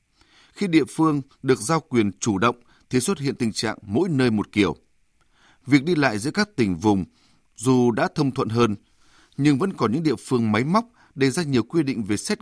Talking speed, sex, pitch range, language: 215 wpm, male, 105-145 Hz, Vietnamese